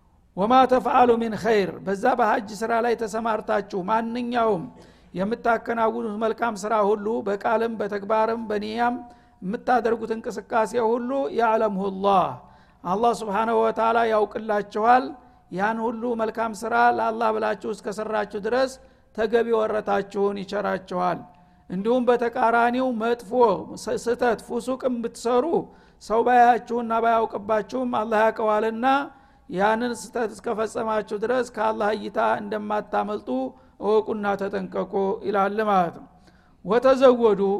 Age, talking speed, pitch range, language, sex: 50-69, 95 wpm, 215-235 Hz, Amharic, male